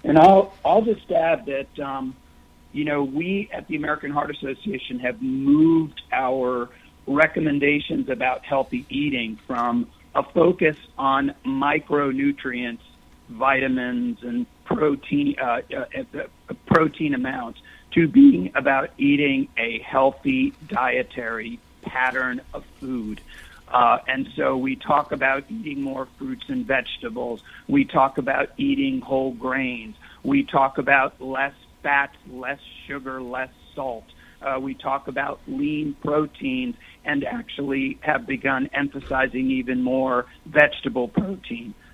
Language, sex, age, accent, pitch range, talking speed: English, male, 50-69, American, 130-175 Hz, 120 wpm